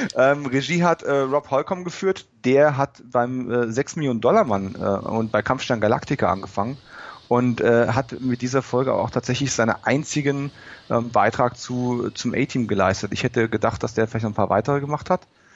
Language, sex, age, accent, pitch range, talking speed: German, male, 30-49, German, 115-140 Hz, 190 wpm